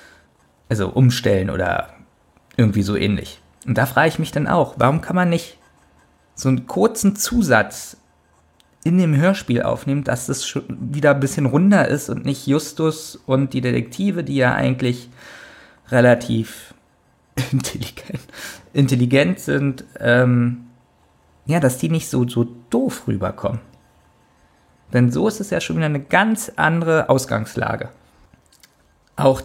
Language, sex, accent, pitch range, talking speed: German, male, German, 115-145 Hz, 135 wpm